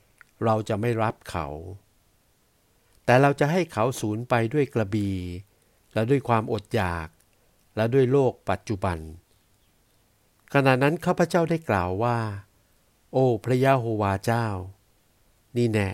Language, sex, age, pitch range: Thai, male, 60-79, 100-120 Hz